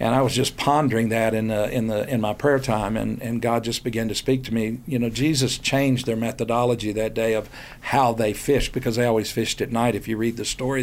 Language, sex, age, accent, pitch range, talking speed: English, male, 50-69, American, 110-130 Hz, 255 wpm